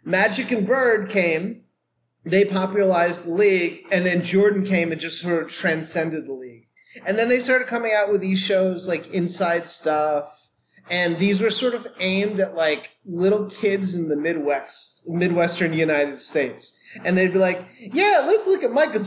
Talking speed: 175 wpm